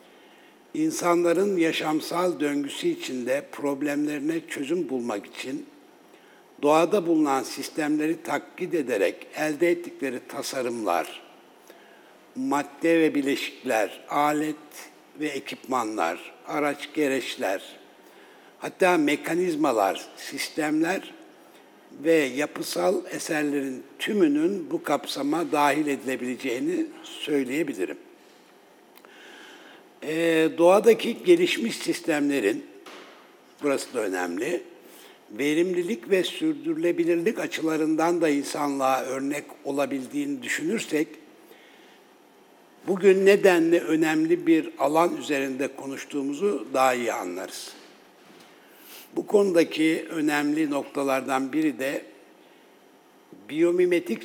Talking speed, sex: 75 wpm, male